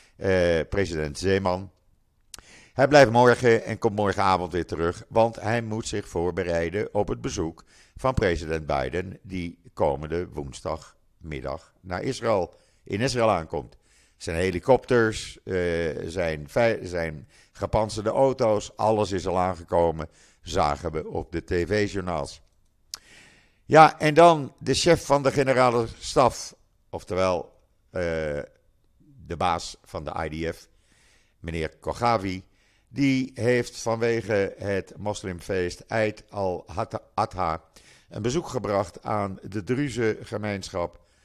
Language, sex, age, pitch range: Dutch, male, 50-69, 85-115 Hz